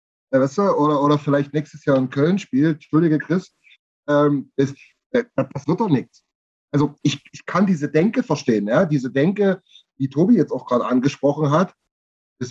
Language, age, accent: German, 30-49, German